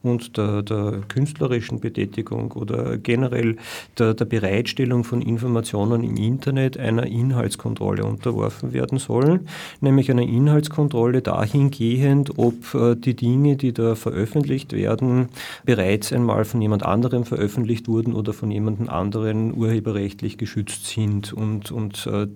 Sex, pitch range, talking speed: male, 110-125 Hz, 130 wpm